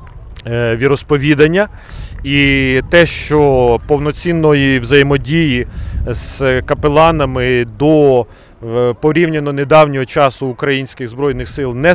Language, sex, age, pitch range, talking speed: Ukrainian, male, 30-49, 115-150 Hz, 80 wpm